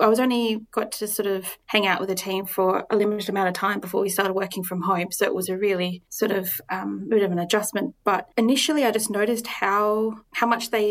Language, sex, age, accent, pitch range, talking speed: English, female, 20-39, Australian, 185-215 Hz, 250 wpm